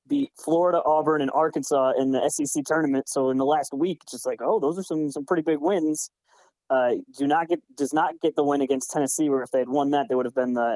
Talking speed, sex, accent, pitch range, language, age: 255 wpm, male, American, 135-170 Hz, English, 20-39